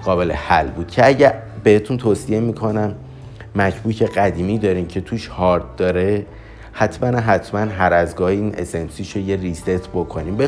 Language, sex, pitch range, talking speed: Persian, male, 90-115 Hz, 150 wpm